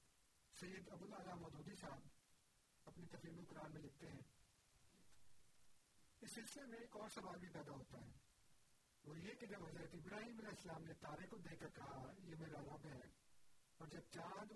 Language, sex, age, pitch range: Urdu, male, 50-69, 145-190 Hz